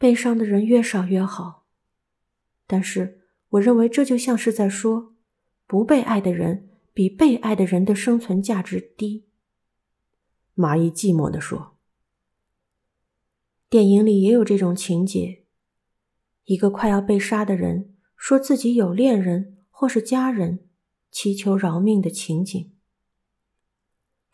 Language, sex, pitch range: Chinese, female, 185-225 Hz